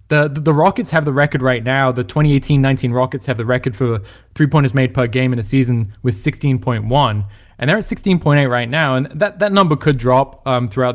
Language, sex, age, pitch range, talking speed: English, male, 20-39, 120-145 Hz, 215 wpm